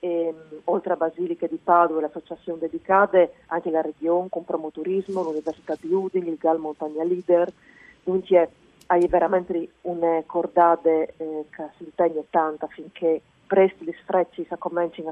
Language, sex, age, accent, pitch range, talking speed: Italian, female, 40-59, native, 160-190 Hz, 145 wpm